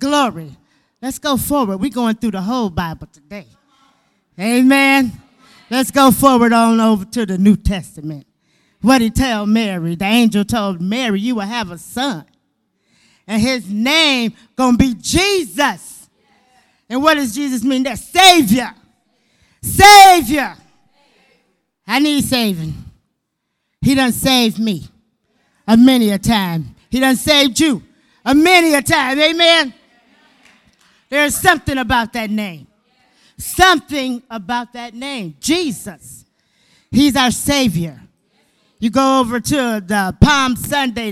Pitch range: 215-285 Hz